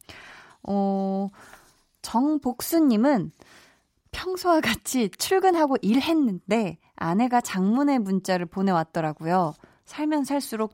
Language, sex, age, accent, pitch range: Korean, female, 20-39, native, 185-260 Hz